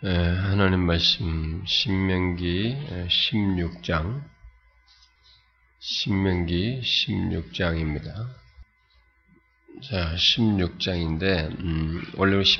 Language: Korean